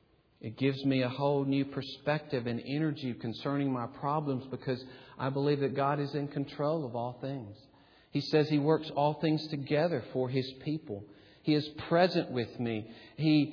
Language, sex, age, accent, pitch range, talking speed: English, male, 50-69, American, 110-150 Hz, 175 wpm